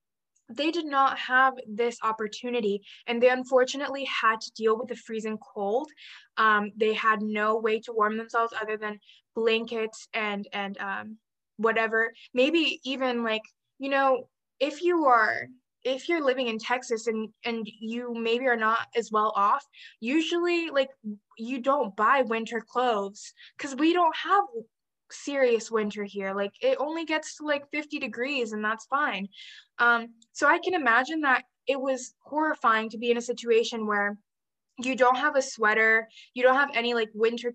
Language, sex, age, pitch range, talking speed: English, female, 20-39, 220-270 Hz, 165 wpm